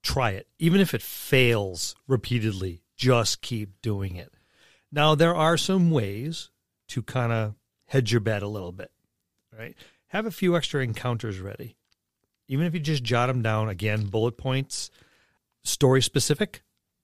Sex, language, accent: male, English, American